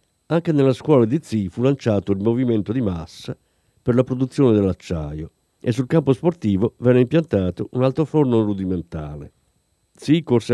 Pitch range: 100-145 Hz